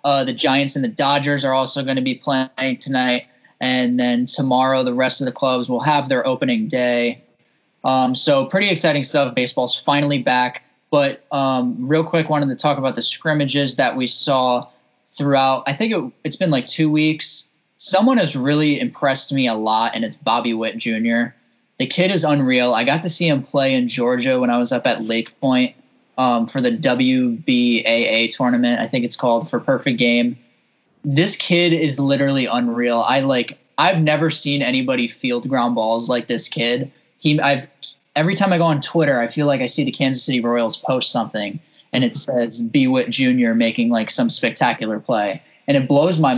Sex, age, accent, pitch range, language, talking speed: male, 10-29, American, 125-155 Hz, English, 195 wpm